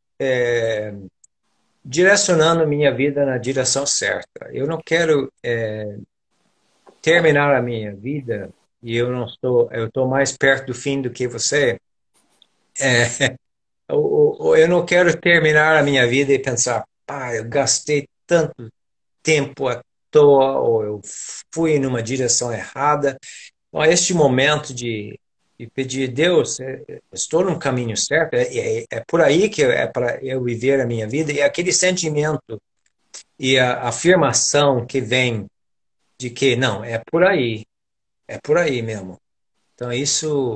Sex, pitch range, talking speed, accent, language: male, 115-150 Hz, 145 wpm, Brazilian, Portuguese